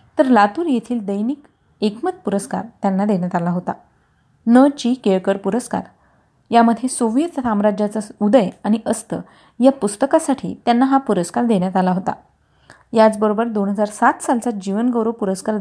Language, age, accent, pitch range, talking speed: Marathi, 30-49, native, 200-250 Hz, 130 wpm